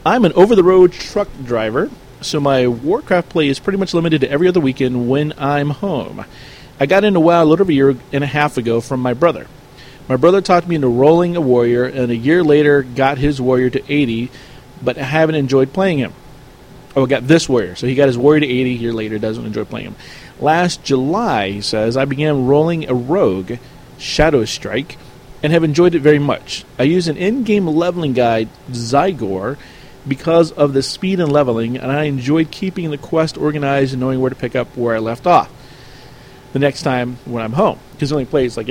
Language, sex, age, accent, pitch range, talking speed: English, male, 40-59, American, 125-155 Hz, 210 wpm